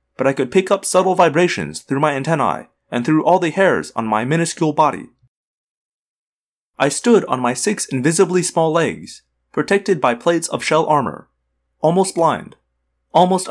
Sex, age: male, 30-49